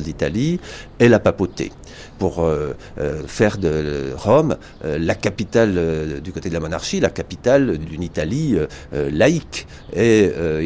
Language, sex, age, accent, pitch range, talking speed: French, male, 60-79, French, 75-100 Hz, 145 wpm